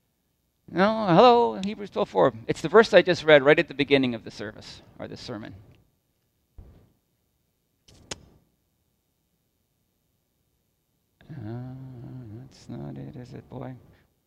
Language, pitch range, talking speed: English, 120-190 Hz, 115 wpm